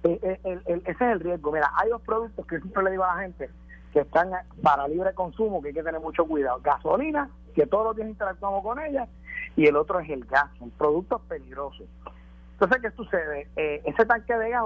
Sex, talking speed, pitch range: male, 220 wpm, 145-195 Hz